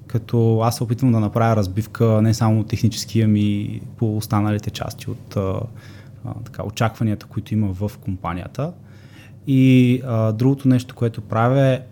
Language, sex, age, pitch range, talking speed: Bulgarian, male, 20-39, 105-125 Hz, 145 wpm